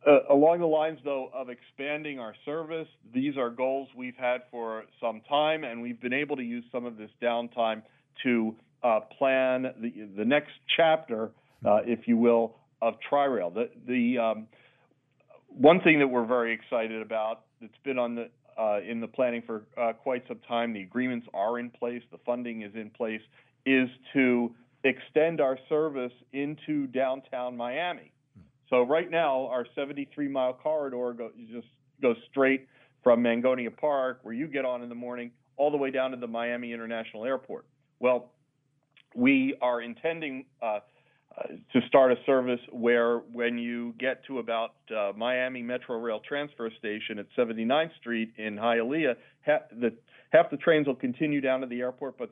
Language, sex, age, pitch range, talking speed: English, male, 40-59, 115-140 Hz, 170 wpm